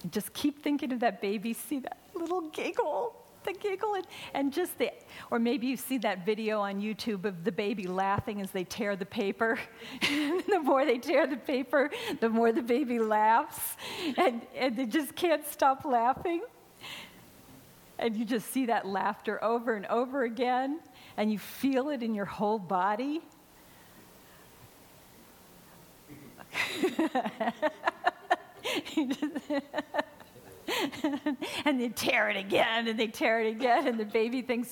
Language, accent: English, American